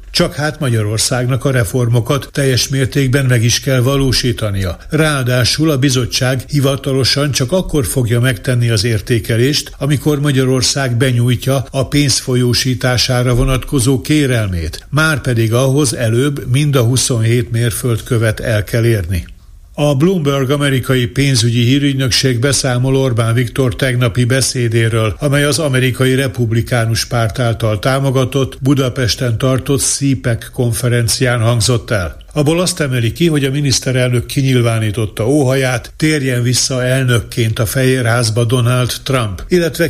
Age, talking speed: 60-79, 115 wpm